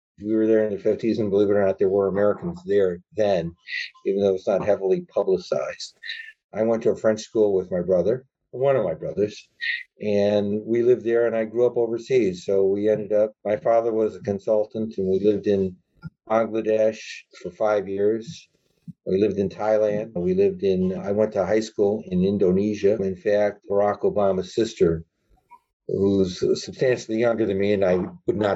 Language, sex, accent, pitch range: English, male, American, 100-135 Hz